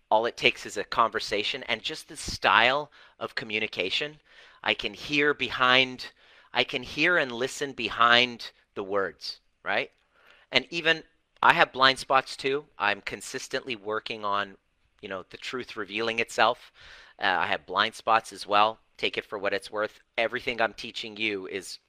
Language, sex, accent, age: English, male, American, 40-59